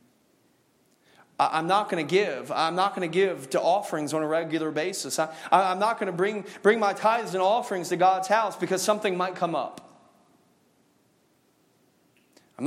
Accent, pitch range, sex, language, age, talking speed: American, 155-220 Hz, male, English, 40-59, 170 wpm